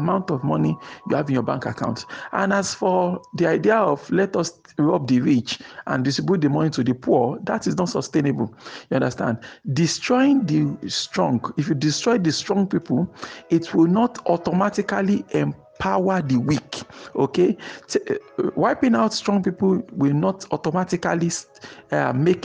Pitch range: 140-190 Hz